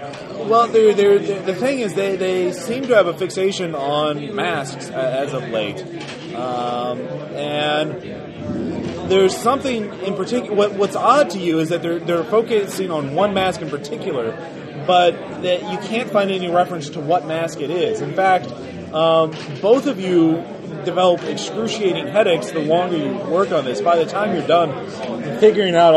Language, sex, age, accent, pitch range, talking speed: English, male, 30-49, American, 150-195 Hz, 160 wpm